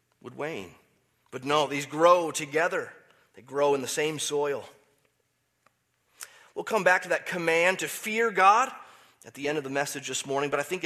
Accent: American